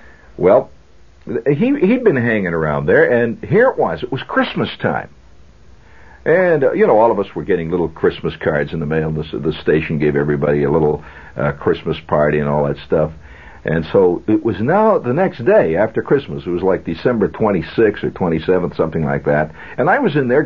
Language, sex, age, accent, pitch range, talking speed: English, male, 60-79, American, 75-125 Hz, 205 wpm